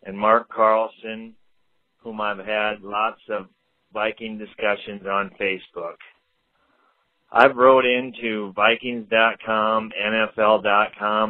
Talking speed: 90 wpm